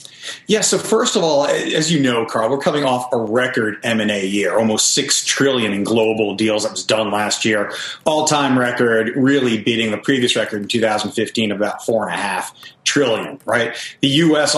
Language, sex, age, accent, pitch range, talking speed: English, male, 30-49, American, 110-140 Hz, 175 wpm